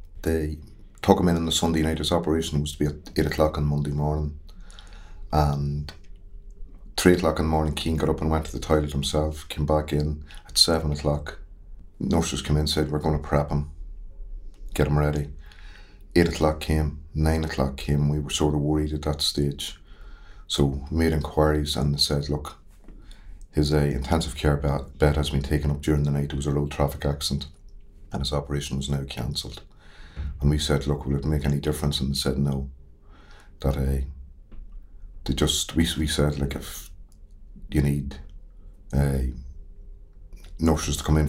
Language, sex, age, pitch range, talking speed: English, male, 30-49, 70-80 Hz, 185 wpm